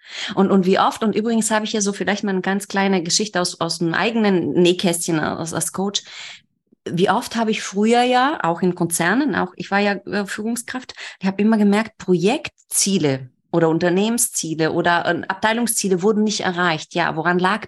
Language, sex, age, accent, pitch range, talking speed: German, female, 30-49, German, 175-215 Hz, 180 wpm